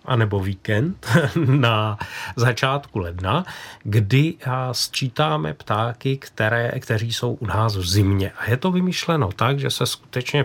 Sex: male